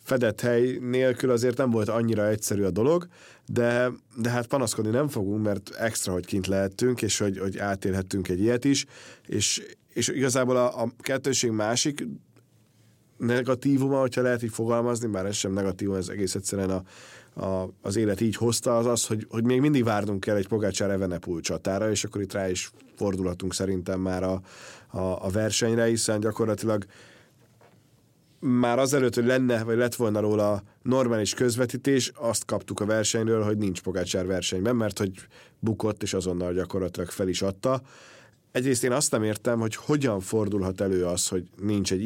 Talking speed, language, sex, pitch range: 170 wpm, Hungarian, male, 100-120 Hz